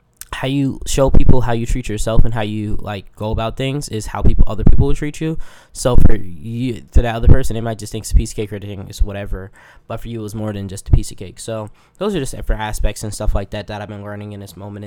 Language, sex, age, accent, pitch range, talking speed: English, male, 10-29, American, 105-125 Hz, 290 wpm